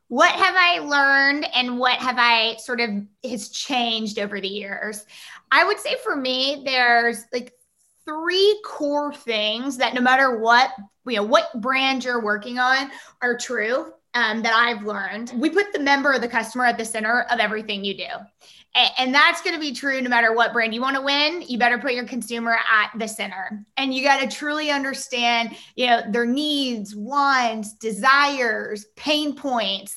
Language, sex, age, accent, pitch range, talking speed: English, female, 20-39, American, 225-275 Hz, 180 wpm